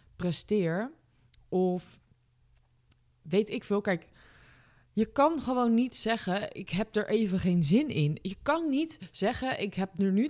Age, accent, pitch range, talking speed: 20-39, Dutch, 145-205 Hz, 150 wpm